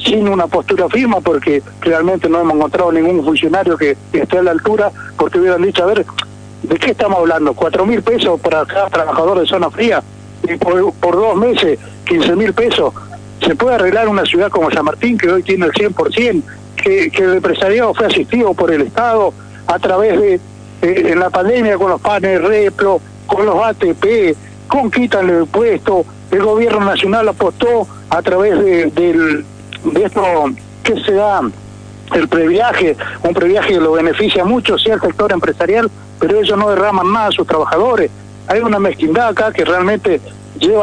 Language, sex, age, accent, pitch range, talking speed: Spanish, male, 60-79, Argentinian, 175-250 Hz, 180 wpm